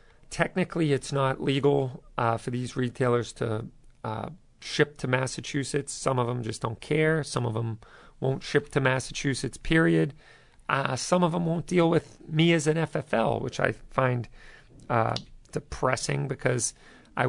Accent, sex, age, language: American, male, 40-59, English